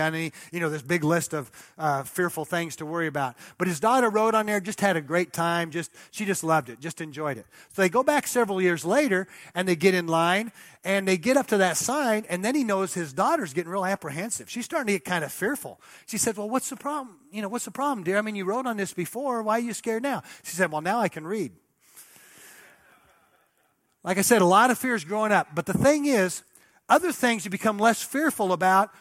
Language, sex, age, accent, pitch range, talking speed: English, male, 40-59, American, 165-215 Hz, 245 wpm